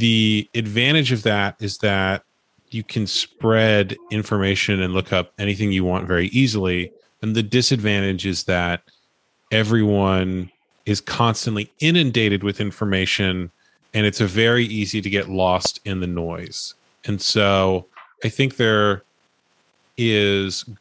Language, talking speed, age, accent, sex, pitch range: English, 135 wpm, 30-49, American, male, 95-115 Hz